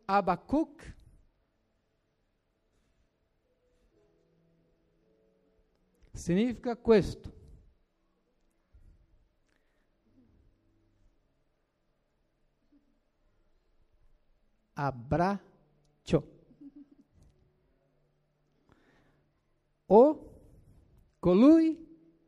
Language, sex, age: Italian, male, 60-79